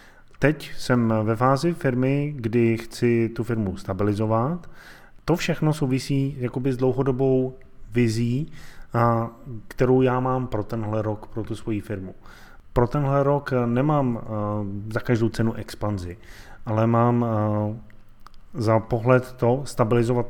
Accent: native